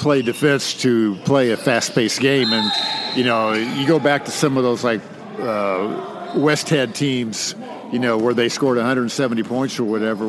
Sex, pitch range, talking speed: male, 120-140 Hz, 180 wpm